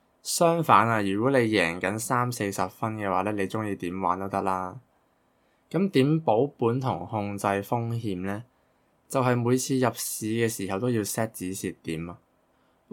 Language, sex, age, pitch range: Chinese, male, 20-39, 95-125 Hz